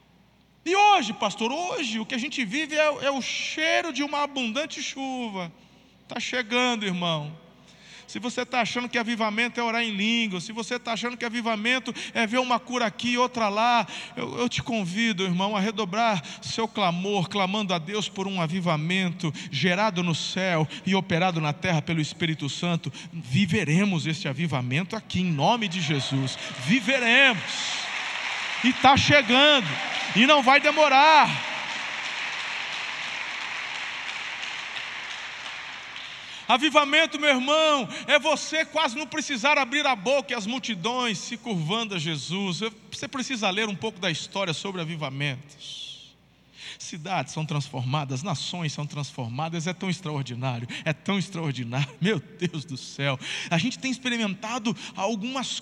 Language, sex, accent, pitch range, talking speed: Portuguese, male, Brazilian, 165-245 Hz, 145 wpm